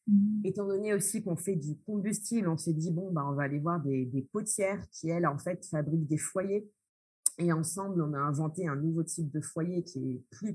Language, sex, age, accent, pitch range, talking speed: French, female, 30-49, French, 150-190 Hz, 220 wpm